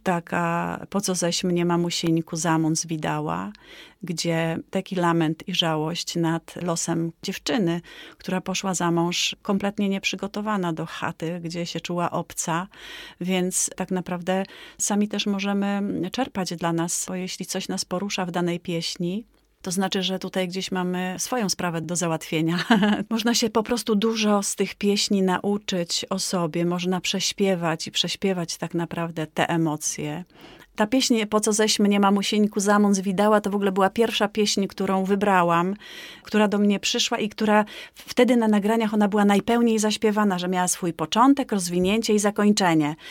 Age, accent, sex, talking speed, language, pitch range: 30-49, native, female, 155 wpm, Polish, 175-210 Hz